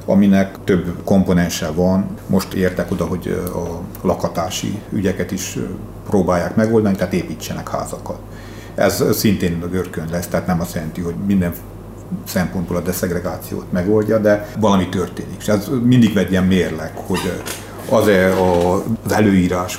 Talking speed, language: 130 wpm, Hungarian